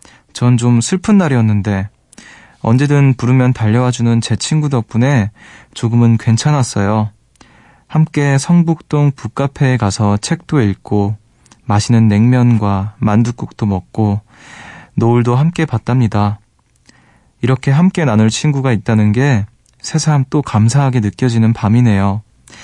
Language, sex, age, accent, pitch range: Korean, male, 20-39, native, 110-140 Hz